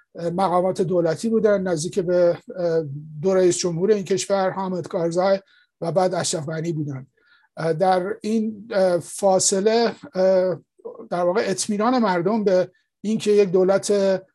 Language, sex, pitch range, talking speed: English, male, 180-215 Hz, 115 wpm